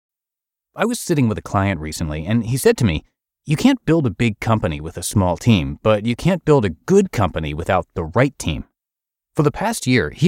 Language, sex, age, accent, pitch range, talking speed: English, male, 30-49, American, 95-135 Hz, 220 wpm